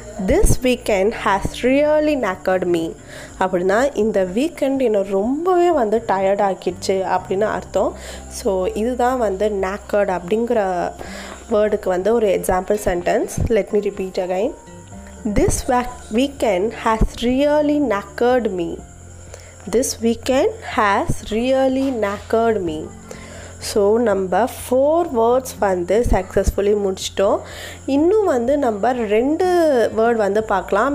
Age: 20-39